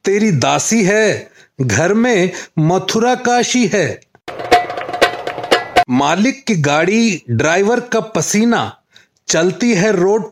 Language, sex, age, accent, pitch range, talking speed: Hindi, male, 40-59, native, 185-240 Hz, 100 wpm